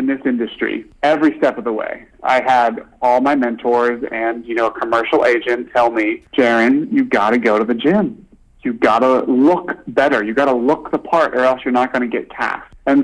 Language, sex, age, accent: English, male, 30-49, American